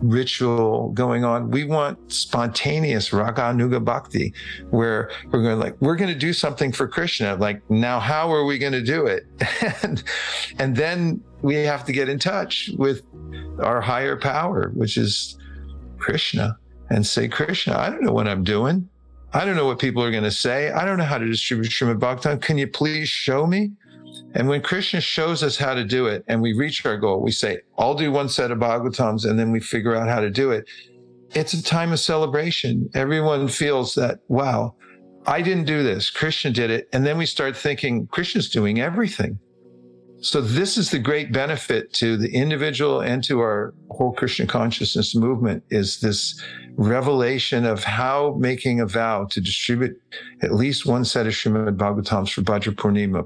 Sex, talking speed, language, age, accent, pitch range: male, 185 wpm, English, 50-69, American, 105-145 Hz